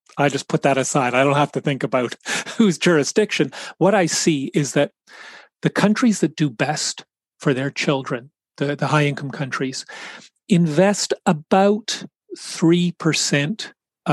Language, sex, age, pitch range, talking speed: English, male, 40-59, 140-170 Hz, 140 wpm